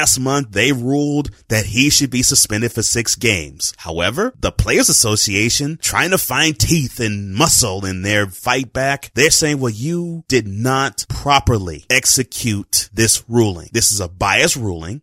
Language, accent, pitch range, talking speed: English, American, 105-145 Hz, 165 wpm